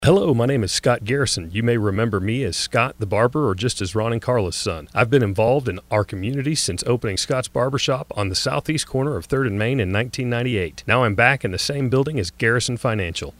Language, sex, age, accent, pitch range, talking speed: English, male, 40-59, American, 105-135 Hz, 230 wpm